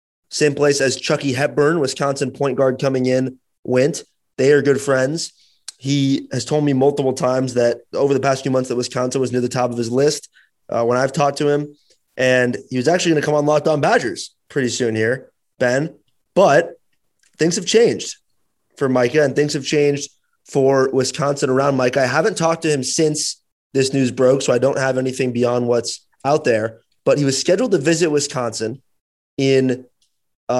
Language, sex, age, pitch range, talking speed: English, male, 20-39, 125-150 Hz, 190 wpm